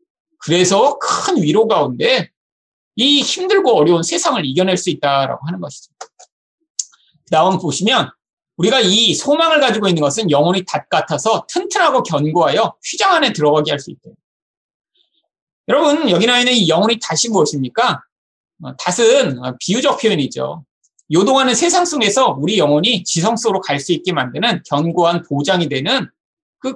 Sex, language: male, Korean